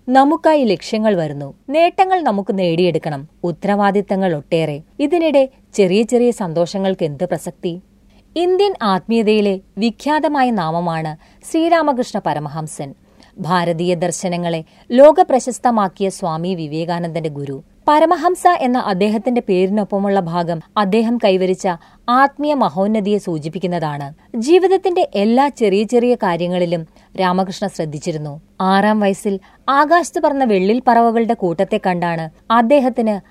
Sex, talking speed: female, 95 wpm